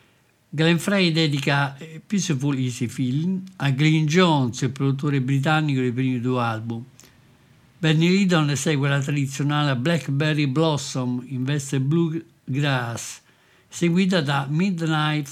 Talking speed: 120 wpm